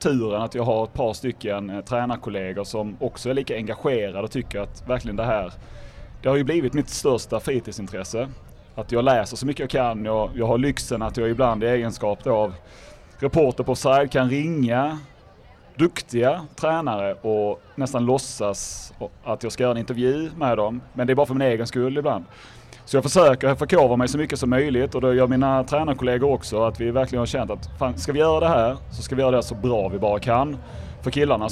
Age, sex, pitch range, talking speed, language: 30-49, male, 110-135 Hz, 215 wpm, Swedish